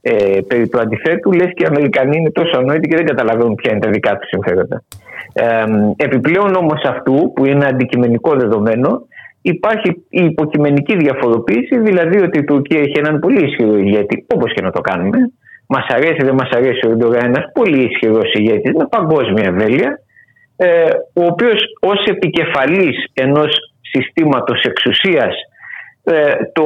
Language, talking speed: Greek, 150 wpm